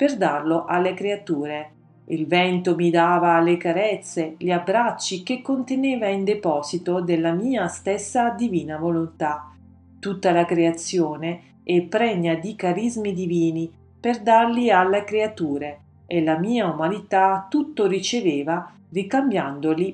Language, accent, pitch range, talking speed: Italian, native, 165-220 Hz, 120 wpm